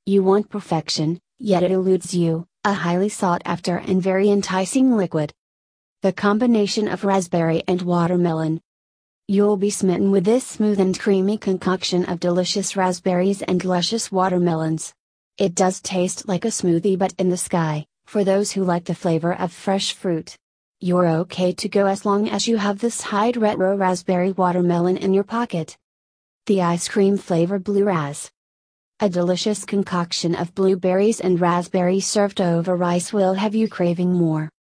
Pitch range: 175-205 Hz